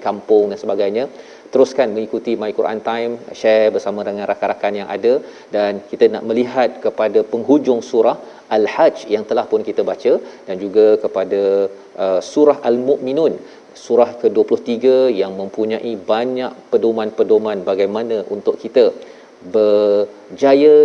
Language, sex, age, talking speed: Malayalam, male, 40-59, 120 wpm